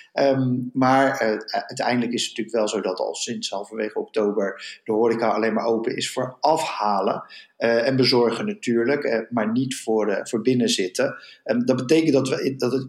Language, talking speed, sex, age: Dutch, 185 wpm, male, 50-69